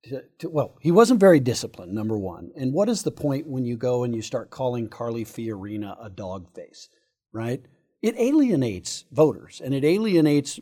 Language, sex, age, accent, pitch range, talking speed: English, male, 50-69, American, 120-155 Hz, 185 wpm